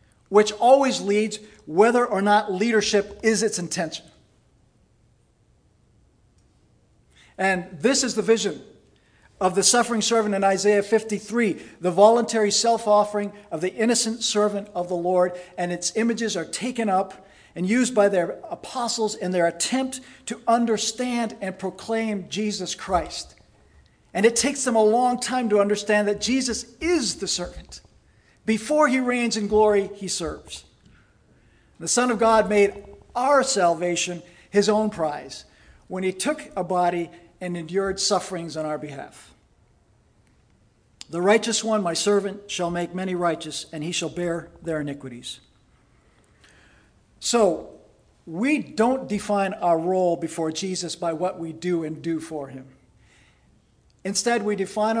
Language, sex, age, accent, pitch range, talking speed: English, male, 50-69, American, 175-225 Hz, 140 wpm